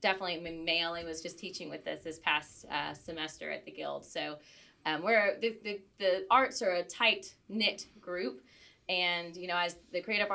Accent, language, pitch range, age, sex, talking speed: American, English, 175-225 Hz, 20-39, female, 195 wpm